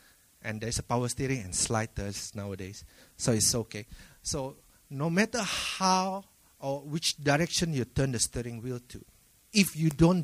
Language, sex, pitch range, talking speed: English, male, 100-150 Hz, 160 wpm